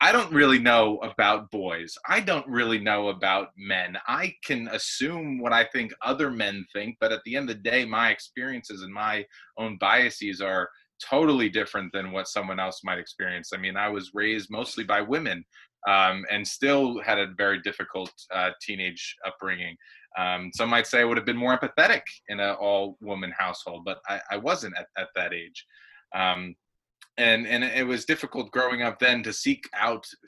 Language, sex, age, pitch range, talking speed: English, male, 20-39, 95-115 Hz, 190 wpm